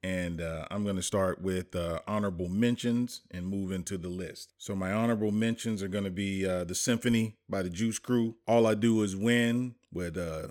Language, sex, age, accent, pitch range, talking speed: English, male, 30-49, American, 95-110 Hz, 210 wpm